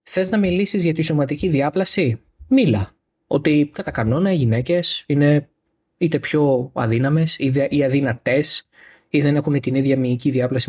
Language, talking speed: Greek, 145 wpm